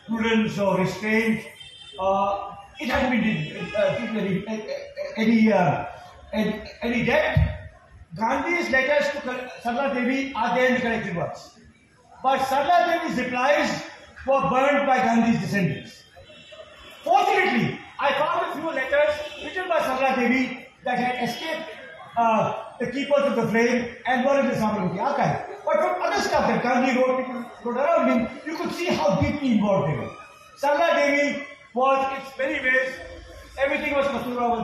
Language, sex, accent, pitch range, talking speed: Tamil, male, native, 230-285 Hz, 145 wpm